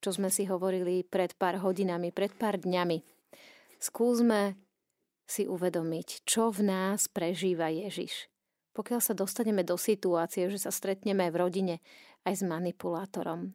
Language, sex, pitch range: Slovak, female, 185-210 Hz